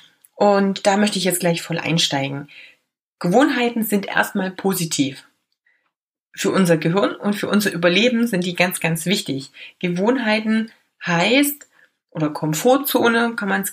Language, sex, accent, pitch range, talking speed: German, female, German, 165-220 Hz, 135 wpm